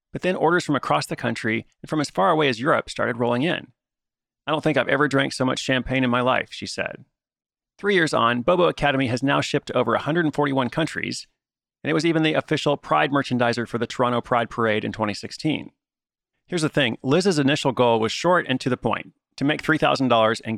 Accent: American